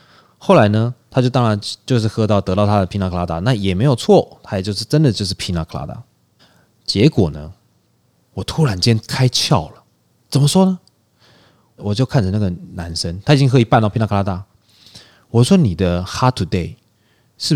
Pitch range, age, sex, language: 95-130 Hz, 20-39, male, Chinese